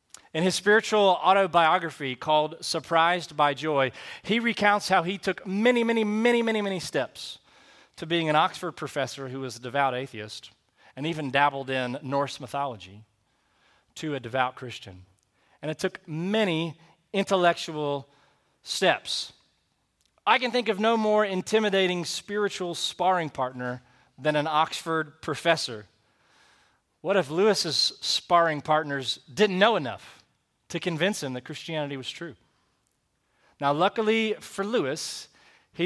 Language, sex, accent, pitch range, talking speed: English, male, American, 130-180 Hz, 130 wpm